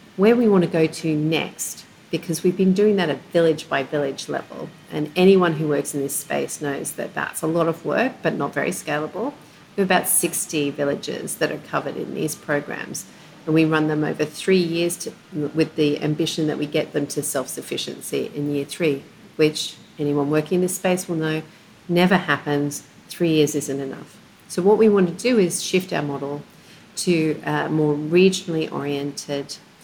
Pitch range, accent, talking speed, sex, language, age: 150-185 Hz, Australian, 190 wpm, female, English, 40-59